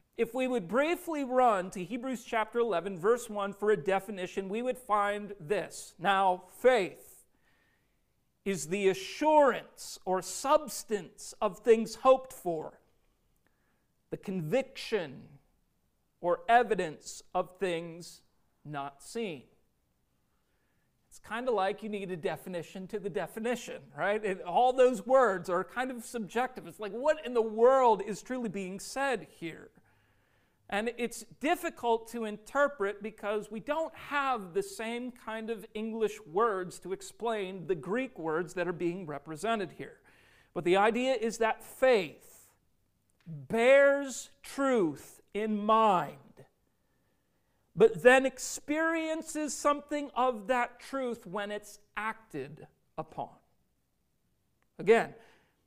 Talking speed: 125 wpm